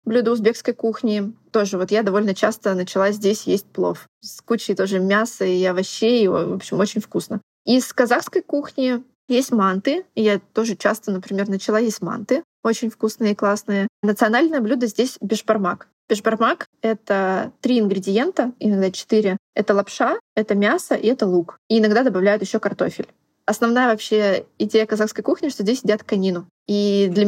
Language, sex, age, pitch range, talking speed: Russian, female, 20-39, 200-235 Hz, 160 wpm